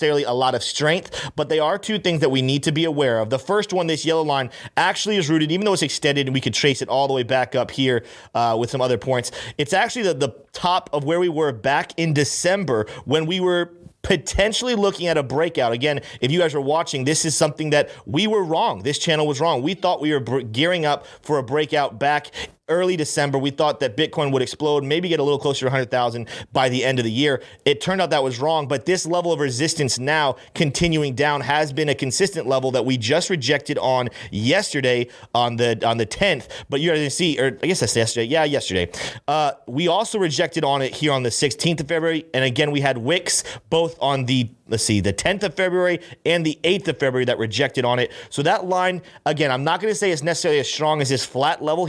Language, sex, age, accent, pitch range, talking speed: English, male, 30-49, American, 130-165 Hz, 240 wpm